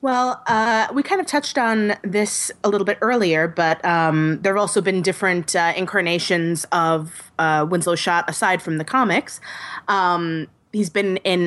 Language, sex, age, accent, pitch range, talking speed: English, female, 20-39, American, 165-200 Hz, 175 wpm